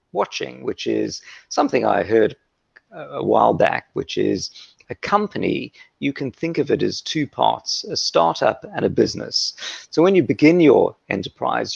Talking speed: 165 wpm